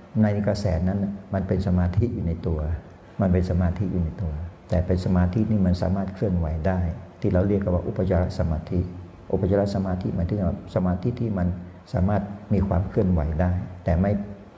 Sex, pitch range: male, 85-95 Hz